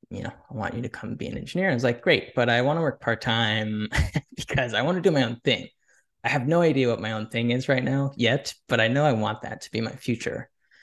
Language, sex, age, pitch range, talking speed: English, male, 10-29, 110-130 Hz, 275 wpm